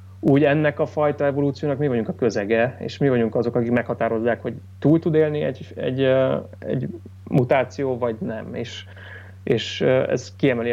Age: 30-49